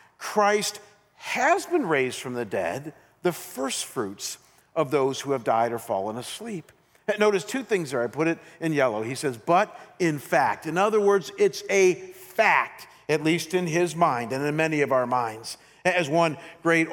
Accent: American